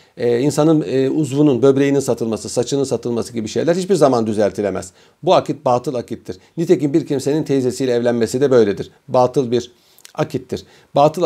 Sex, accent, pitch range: male, native, 130-180 Hz